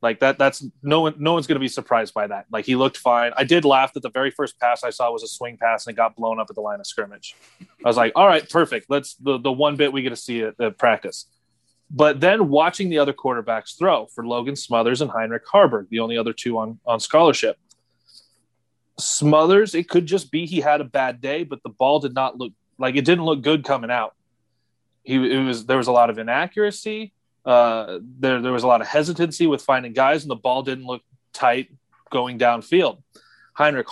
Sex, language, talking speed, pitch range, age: male, English, 230 wpm, 120-150 Hz, 30-49